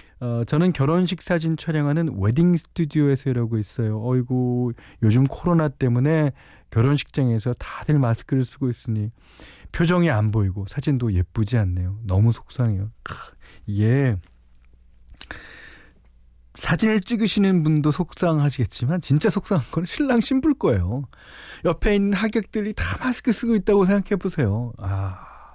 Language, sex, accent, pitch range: Korean, male, native, 100-165 Hz